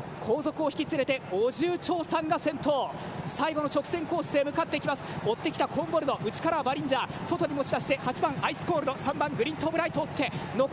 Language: Chinese